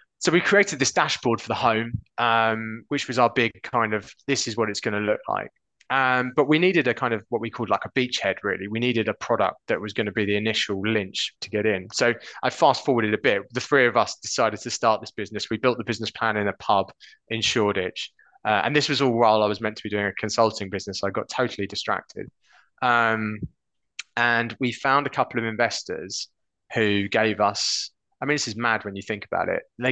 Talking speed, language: 235 wpm, English